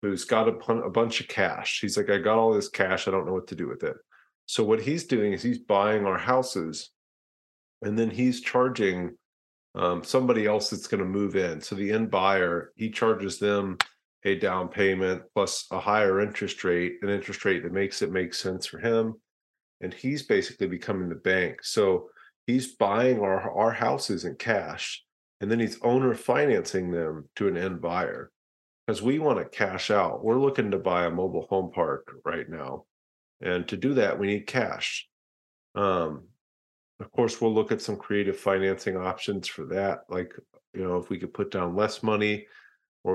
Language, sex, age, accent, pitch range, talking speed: English, male, 40-59, American, 90-110 Hz, 190 wpm